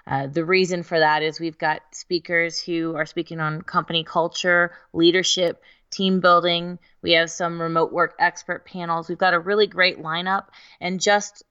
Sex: female